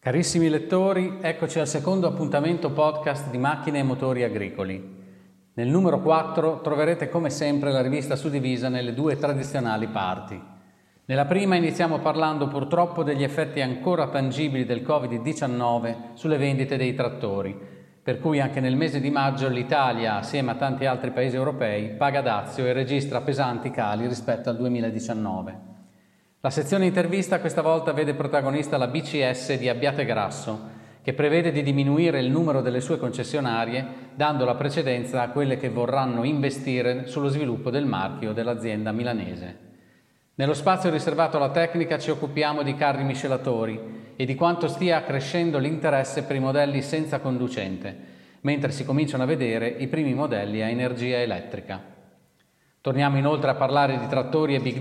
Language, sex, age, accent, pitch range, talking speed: Italian, male, 40-59, native, 120-155 Hz, 150 wpm